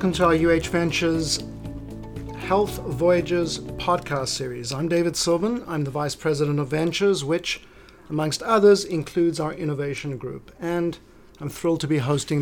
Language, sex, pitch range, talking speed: English, male, 145-180 Hz, 150 wpm